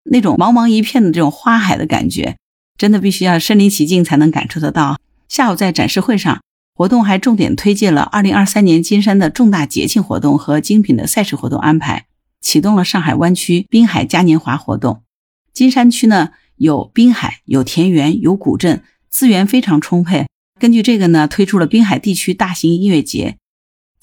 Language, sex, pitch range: Chinese, female, 160-230 Hz